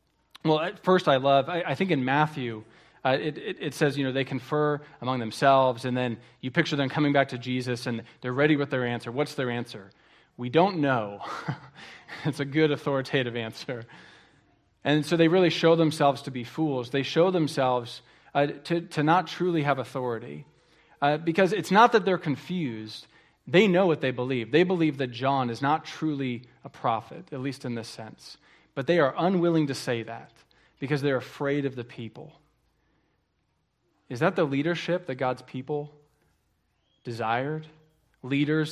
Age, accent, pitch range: 40-59, American, 125-155 Hz